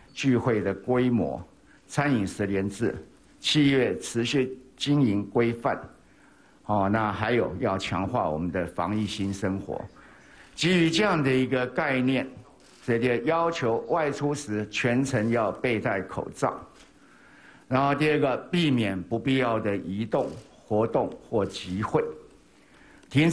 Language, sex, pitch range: Japanese, male, 105-130 Hz